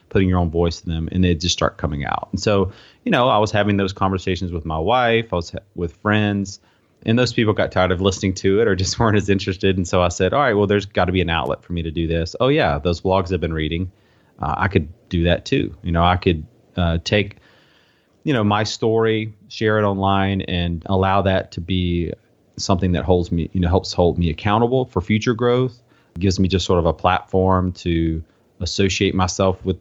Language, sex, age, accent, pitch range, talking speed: English, male, 30-49, American, 85-105 Hz, 235 wpm